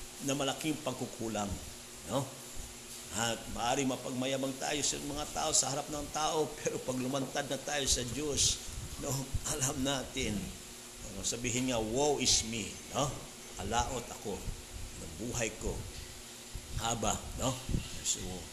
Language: Filipino